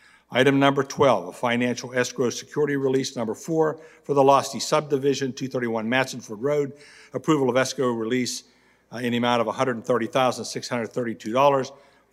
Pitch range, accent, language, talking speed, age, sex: 120-140 Hz, American, English, 130 wpm, 60-79, male